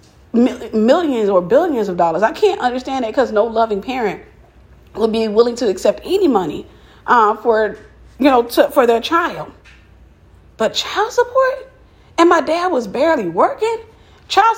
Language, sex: English, female